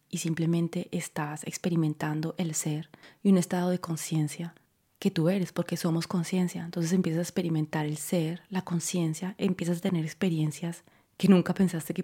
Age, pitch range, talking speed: 20-39, 165-185 Hz, 170 wpm